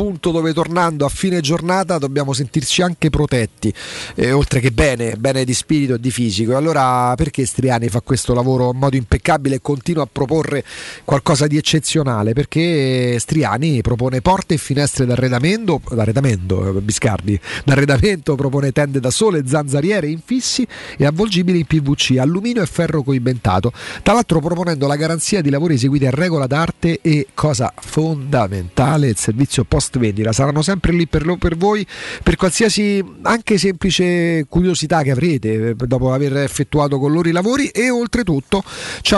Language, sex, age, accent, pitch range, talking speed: Italian, male, 40-59, native, 135-180 Hz, 155 wpm